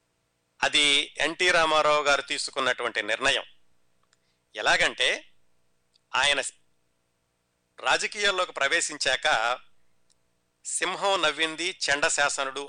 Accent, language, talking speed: native, Telugu, 60 wpm